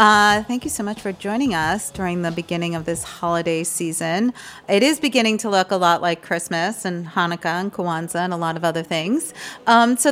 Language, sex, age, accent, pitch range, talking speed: English, female, 40-59, American, 175-235 Hz, 215 wpm